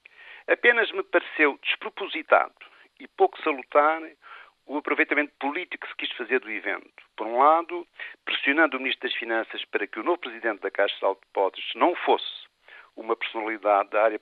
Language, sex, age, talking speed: Portuguese, male, 50-69, 175 wpm